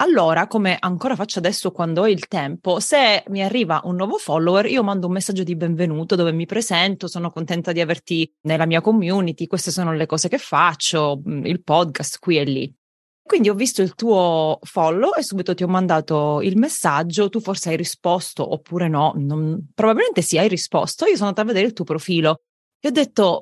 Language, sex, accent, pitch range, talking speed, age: Italian, female, native, 165-205 Hz, 195 wpm, 30-49